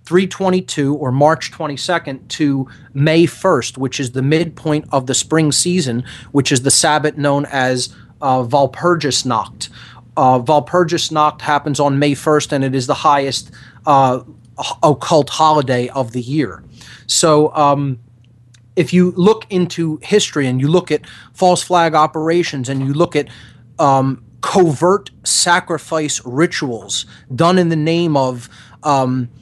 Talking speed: 135 wpm